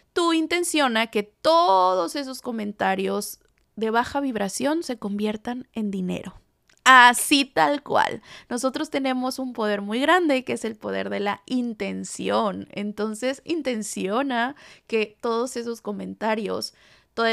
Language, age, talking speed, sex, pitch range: Spanish, 20-39, 125 wpm, female, 210-270 Hz